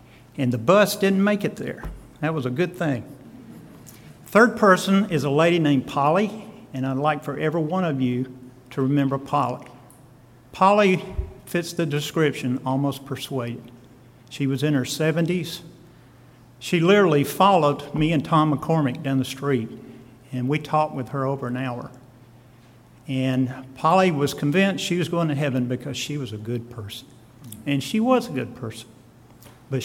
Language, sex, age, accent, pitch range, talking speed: English, male, 50-69, American, 125-160 Hz, 165 wpm